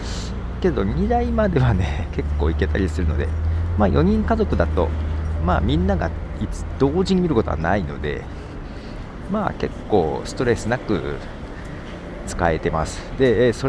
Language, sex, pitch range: Japanese, male, 80-110 Hz